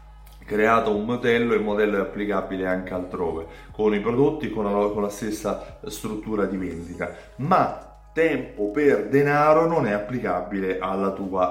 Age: 30-49